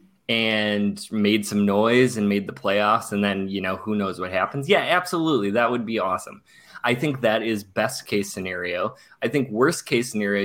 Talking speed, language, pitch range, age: 195 wpm, English, 95-115 Hz, 20-39